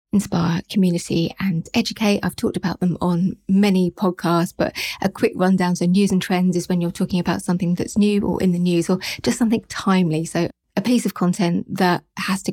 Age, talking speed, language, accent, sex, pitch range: 20-39, 205 wpm, English, British, female, 175-200 Hz